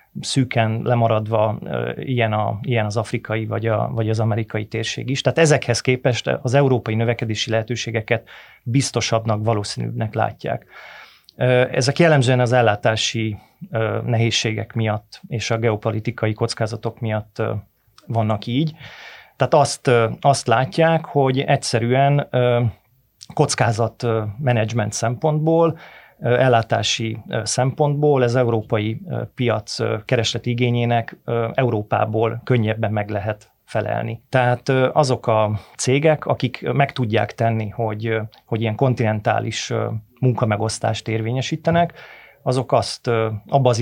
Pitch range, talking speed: 110-130 Hz, 105 wpm